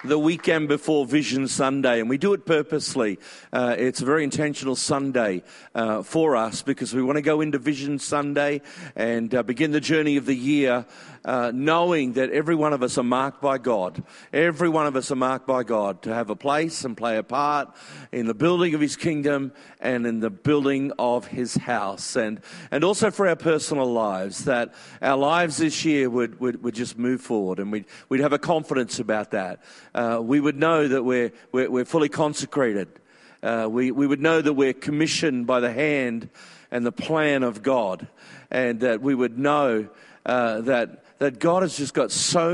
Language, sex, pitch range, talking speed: English, male, 125-150 Hz, 200 wpm